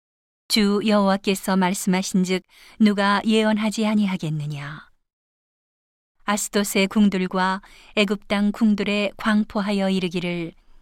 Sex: female